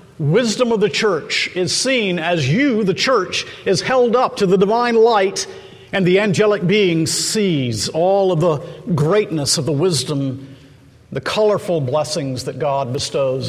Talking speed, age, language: 155 wpm, 50-69, English